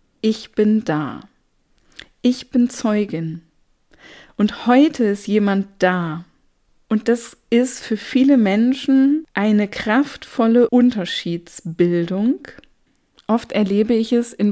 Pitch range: 190-230 Hz